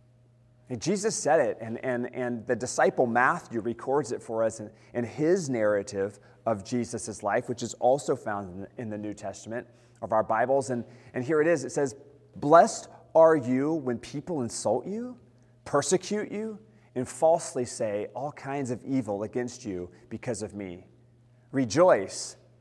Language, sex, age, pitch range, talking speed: English, male, 30-49, 120-145 Hz, 165 wpm